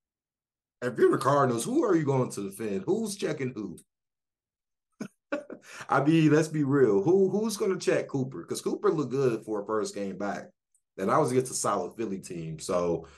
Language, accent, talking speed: English, American, 190 wpm